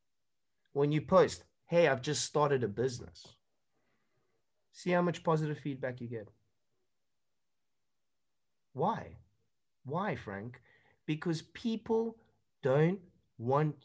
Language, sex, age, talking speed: English, male, 30-49, 100 wpm